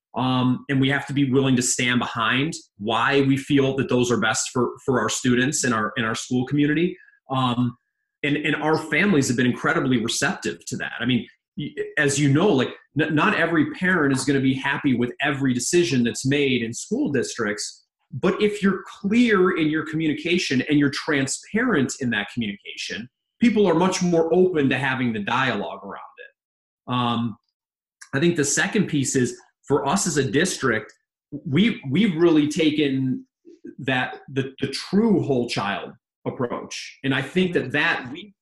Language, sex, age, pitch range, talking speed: English, male, 30-49, 130-170 Hz, 175 wpm